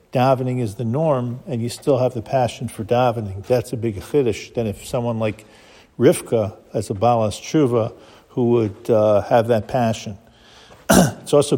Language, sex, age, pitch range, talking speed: English, male, 50-69, 110-130 Hz, 170 wpm